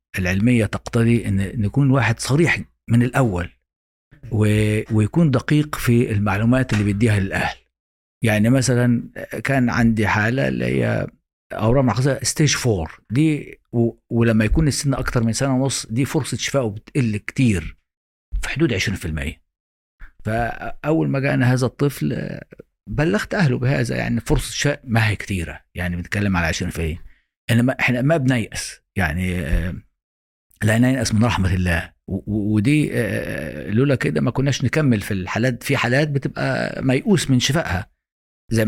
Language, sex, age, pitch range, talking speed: Arabic, male, 50-69, 95-130 Hz, 135 wpm